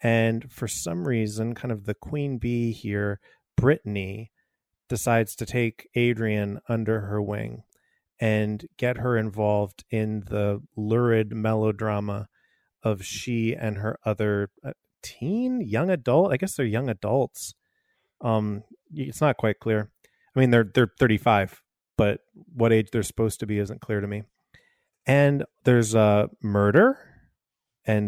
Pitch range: 105-130 Hz